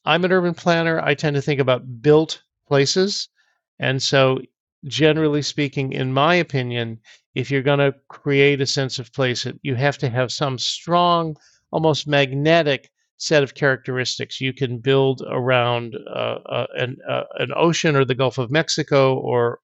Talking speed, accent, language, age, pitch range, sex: 165 wpm, American, English, 50-69, 130-160 Hz, male